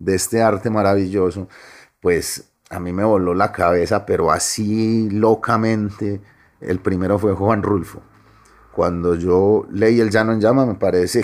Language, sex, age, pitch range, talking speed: Spanish, male, 30-49, 90-105 Hz, 150 wpm